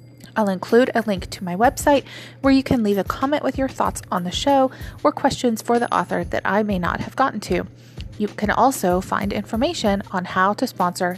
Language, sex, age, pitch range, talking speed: English, female, 30-49, 195-235 Hz, 215 wpm